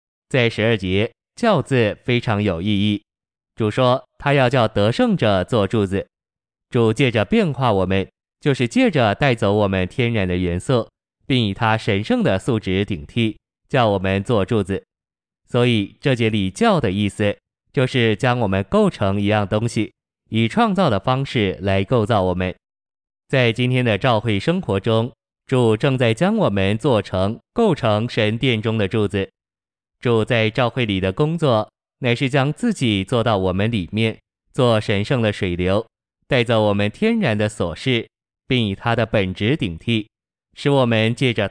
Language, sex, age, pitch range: Chinese, male, 20-39, 100-125 Hz